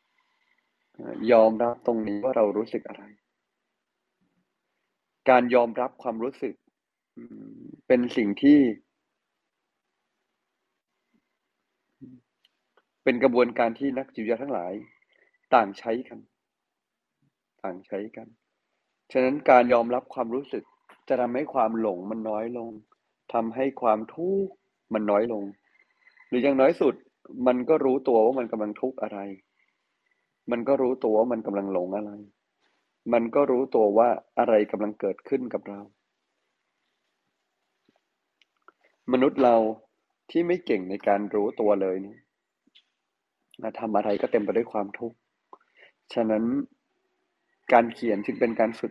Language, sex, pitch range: Thai, male, 110-130 Hz